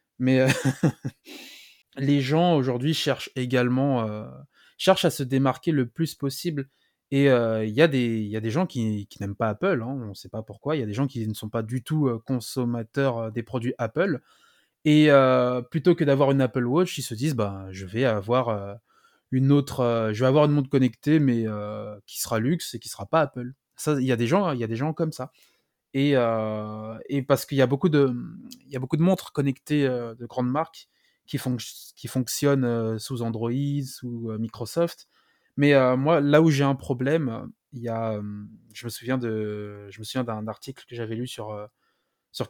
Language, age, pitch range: French, 20-39, 115-140 Hz